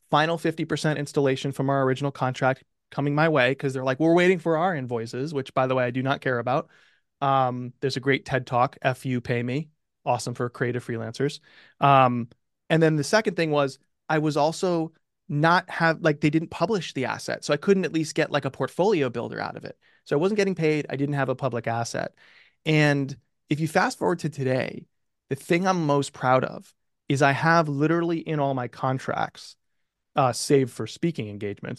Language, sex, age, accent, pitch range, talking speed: English, male, 20-39, American, 130-160 Hz, 205 wpm